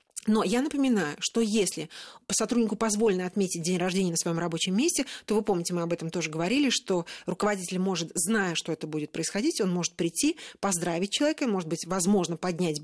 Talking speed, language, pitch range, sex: 180 wpm, Russian, 180-235 Hz, female